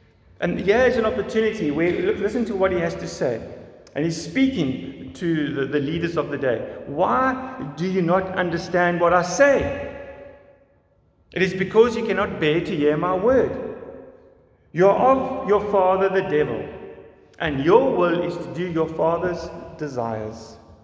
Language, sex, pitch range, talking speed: English, male, 140-215 Hz, 165 wpm